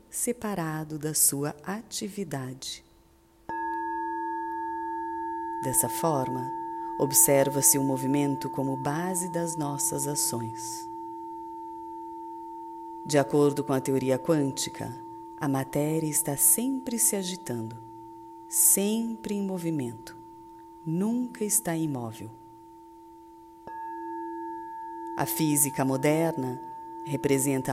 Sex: female